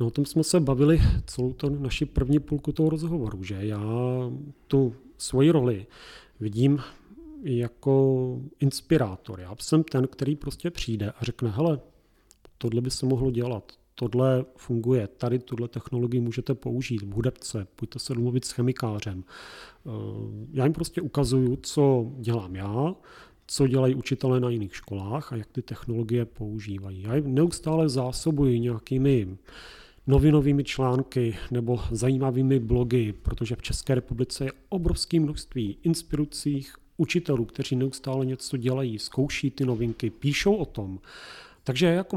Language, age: Czech, 40-59